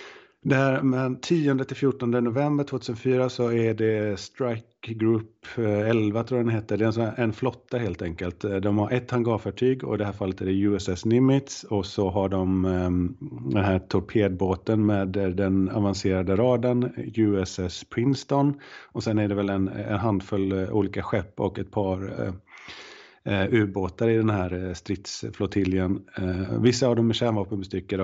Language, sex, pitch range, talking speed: Swedish, male, 95-120 Hz, 155 wpm